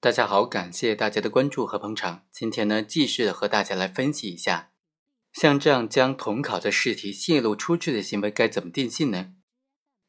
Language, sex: Chinese, male